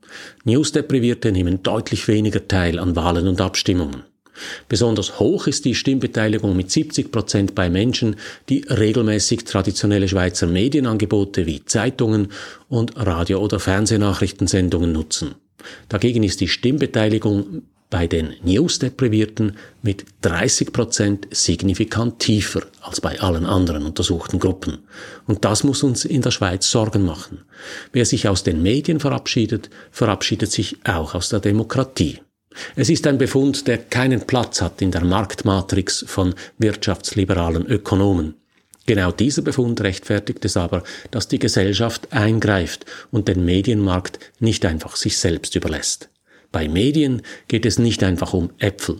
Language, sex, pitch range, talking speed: German, male, 95-120 Hz, 135 wpm